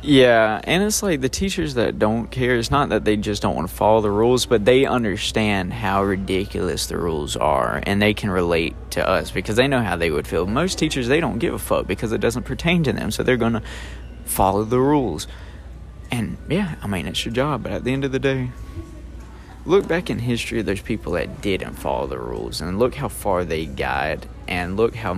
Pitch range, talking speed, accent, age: 95-125 Hz, 225 wpm, American, 20-39